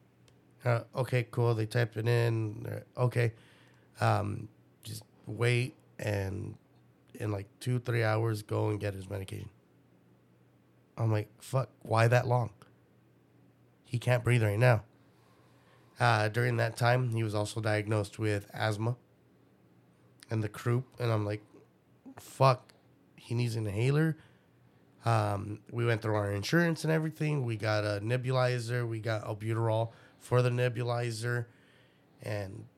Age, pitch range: 30-49, 105-125 Hz